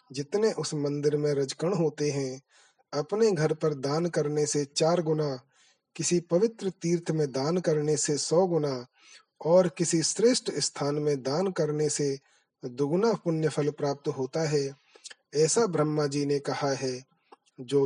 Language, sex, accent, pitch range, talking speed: Hindi, male, native, 140-165 Hz, 150 wpm